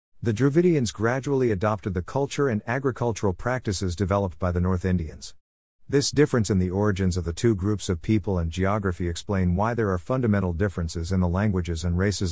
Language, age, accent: English, 50-69, American